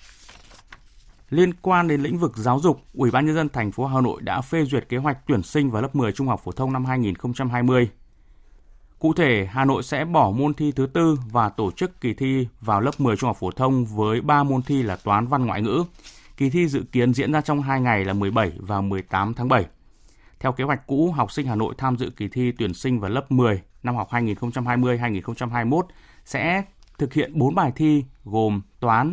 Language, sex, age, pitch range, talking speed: Vietnamese, male, 20-39, 105-135 Hz, 215 wpm